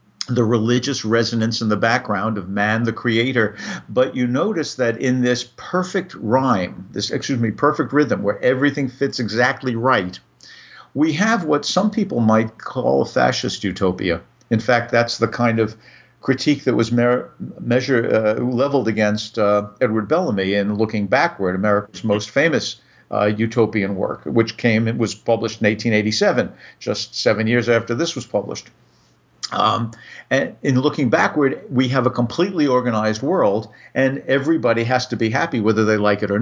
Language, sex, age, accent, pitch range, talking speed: English, male, 50-69, American, 110-135 Hz, 160 wpm